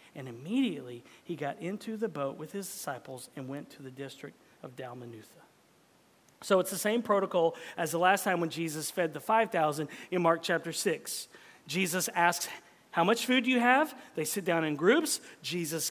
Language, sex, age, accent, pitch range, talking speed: English, male, 40-59, American, 160-235 Hz, 185 wpm